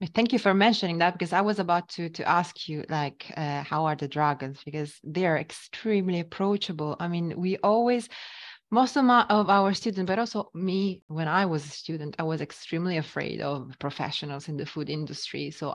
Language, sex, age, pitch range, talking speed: English, female, 20-39, 150-195 Hz, 200 wpm